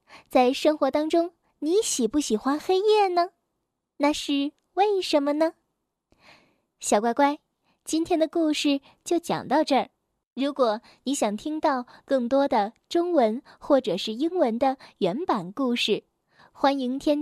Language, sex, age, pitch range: Chinese, female, 10-29, 235-330 Hz